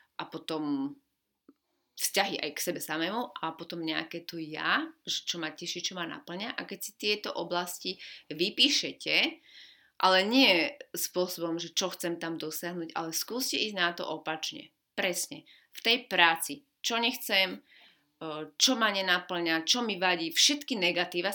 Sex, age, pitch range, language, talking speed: female, 30-49, 170-205 Hz, Slovak, 145 wpm